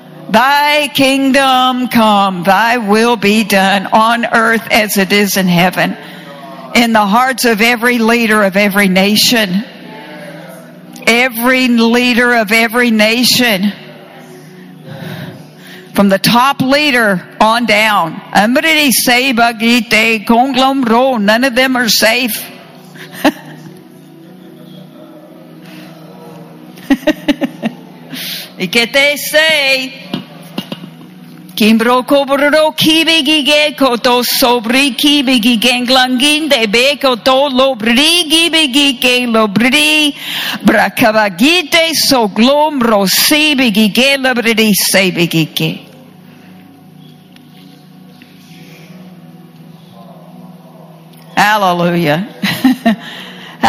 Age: 60-79